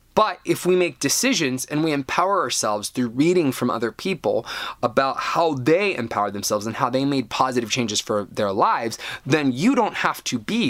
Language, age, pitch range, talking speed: English, 20-39, 120-180 Hz, 190 wpm